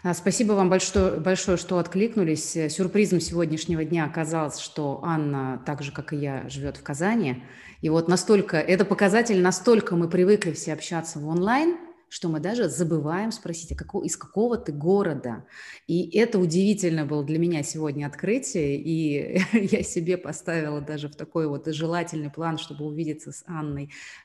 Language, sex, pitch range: Russian, female, 145-185 Hz